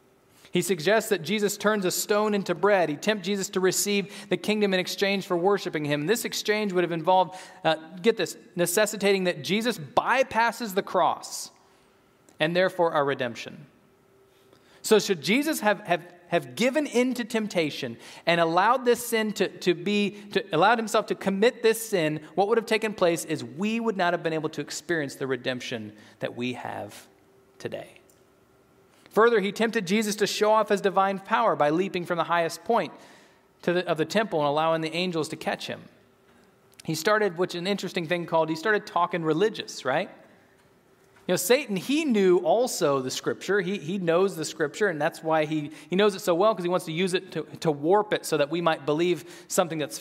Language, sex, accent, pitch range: English, male, American, 160-210 Hz